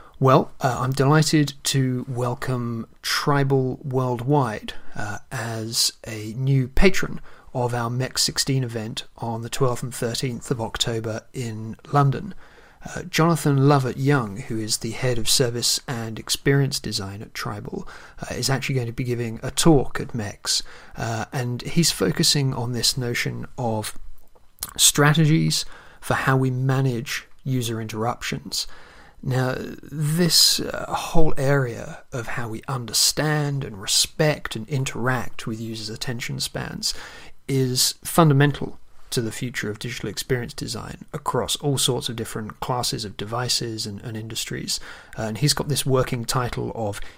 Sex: male